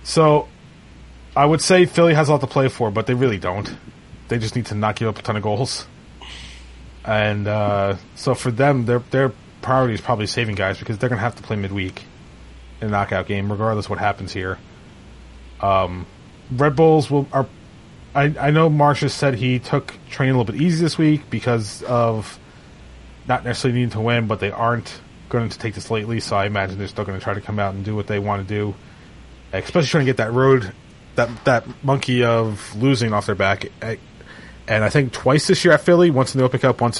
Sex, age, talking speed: male, 30-49, 220 wpm